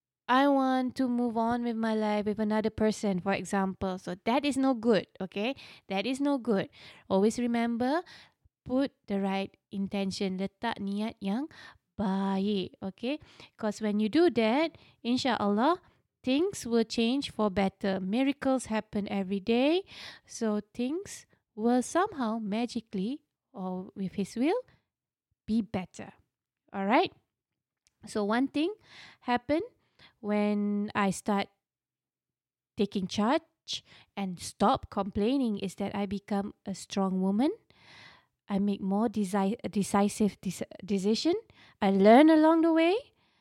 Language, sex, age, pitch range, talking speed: English, female, 20-39, 200-260 Hz, 125 wpm